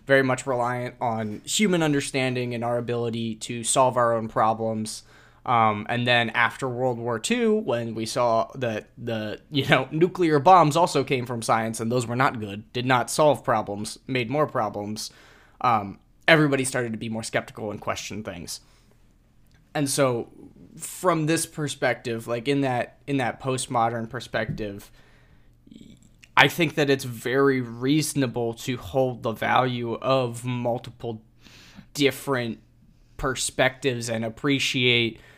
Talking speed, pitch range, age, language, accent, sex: 140 wpm, 115-140 Hz, 20-39, English, American, male